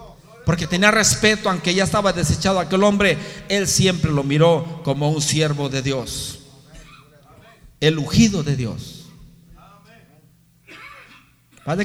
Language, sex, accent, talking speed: Spanish, male, Mexican, 115 wpm